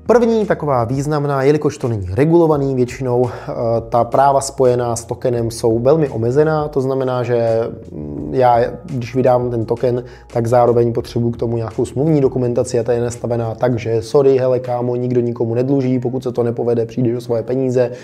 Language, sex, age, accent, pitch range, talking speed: Czech, male, 20-39, native, 120-140 Hz, 175 wpm